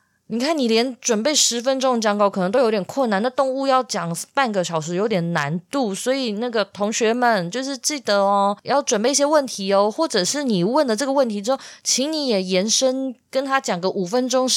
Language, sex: Chinese, female